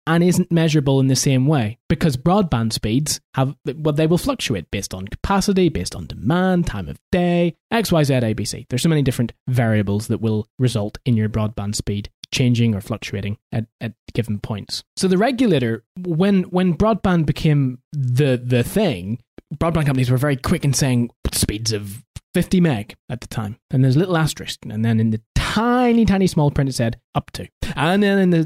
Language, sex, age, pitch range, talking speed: English, male, 20-39, 115-165 Hz, 200 wpm